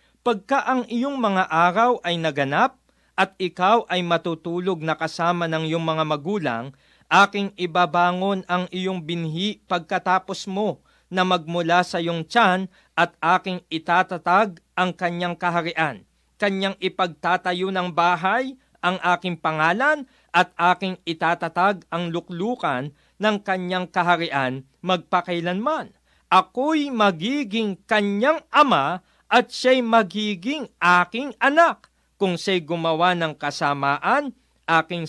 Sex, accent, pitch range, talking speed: male, native, 165-205 Hz, 115 wpm